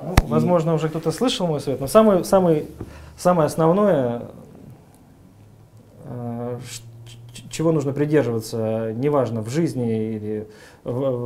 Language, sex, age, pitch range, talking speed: Russian, male, 20-39, 120-160 Hz, 90 wpm